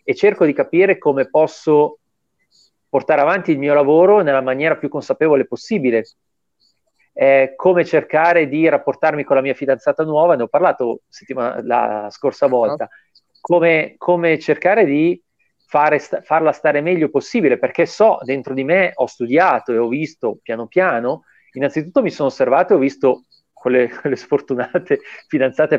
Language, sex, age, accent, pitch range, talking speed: Italian, male, 40-59, native, 125-160 Hz, 145 wpm